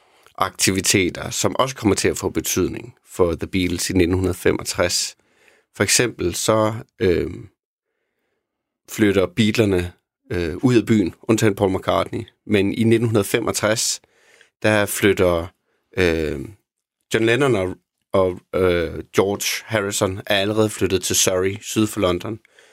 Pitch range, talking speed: 95-110 Hz, 125 wpm